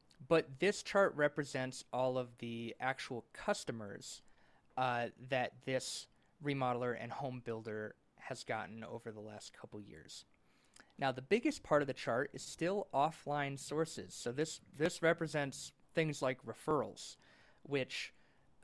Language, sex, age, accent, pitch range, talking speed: English, male, 20-39, American, 115-150 Hz, 135 wpm